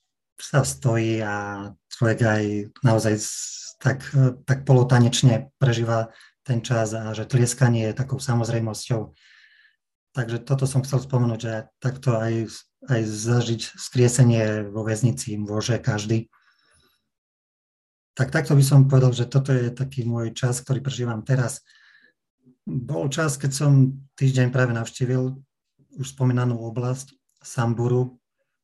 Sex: male